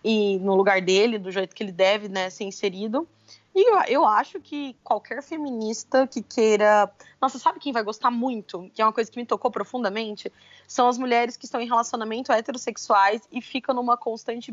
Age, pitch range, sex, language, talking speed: 20-39, 210-250 Hz, female, Portuguese, 195 wpm